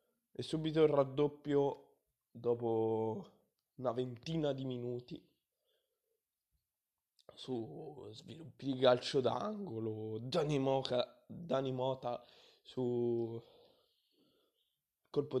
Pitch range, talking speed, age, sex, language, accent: 120-160 Hz, 80 wpm, 20-39, male, Italian, native